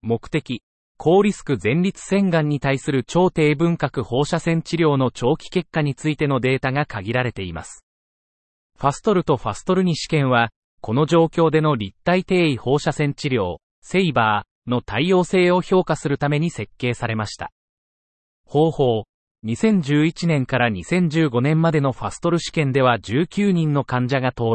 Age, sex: 30-49, male